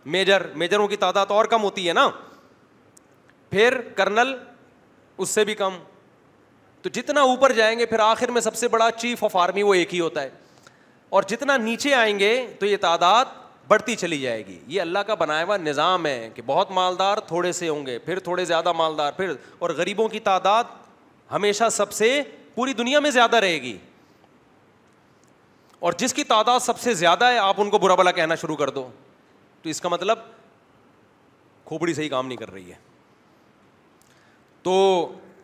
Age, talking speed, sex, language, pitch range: 30-49, 185 wpm, male, Urdu, 160-215 Hz